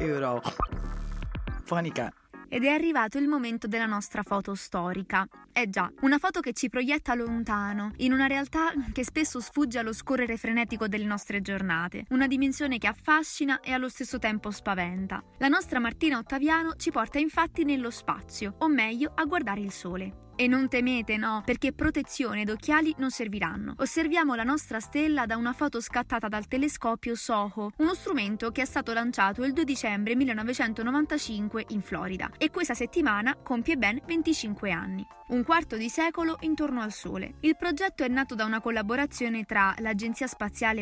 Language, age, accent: Italian, 20-39, native